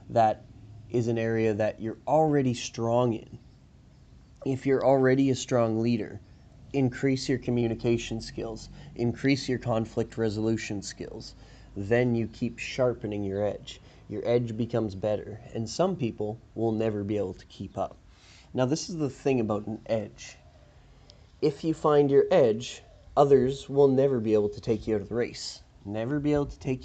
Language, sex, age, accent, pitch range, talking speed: English, male, 30-49, American, 105-130 Hz, 165 wpm